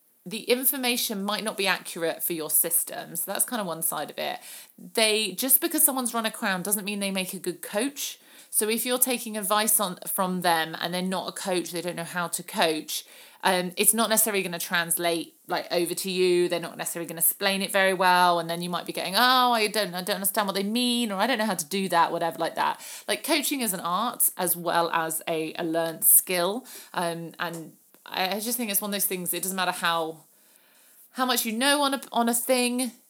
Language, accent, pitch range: English, British, 170-215 Hz